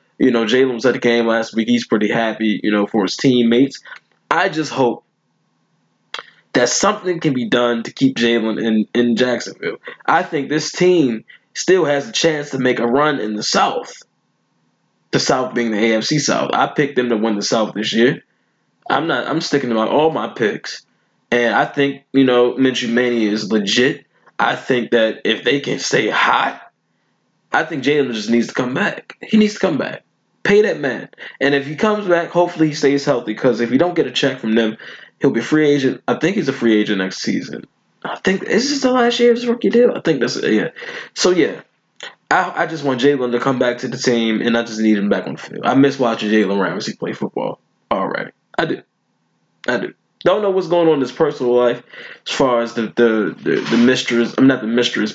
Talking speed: 225 wpm